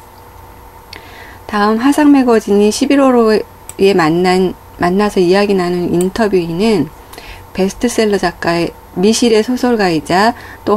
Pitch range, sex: 175-220 Hz, female